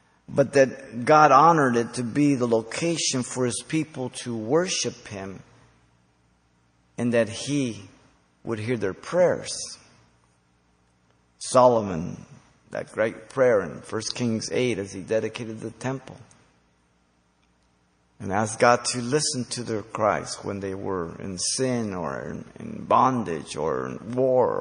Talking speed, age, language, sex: 130 wpm, 50-69, English, male